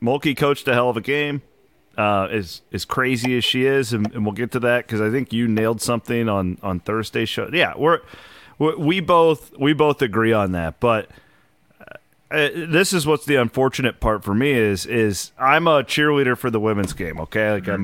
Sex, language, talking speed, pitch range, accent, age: male, English, 210 wpm, 105-140 Hz, American, 30-49